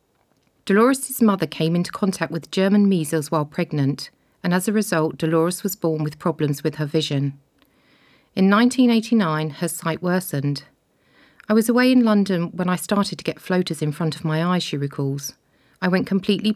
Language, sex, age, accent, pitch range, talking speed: English, female, 40-59, British, 160-200 Hz, 175 wpm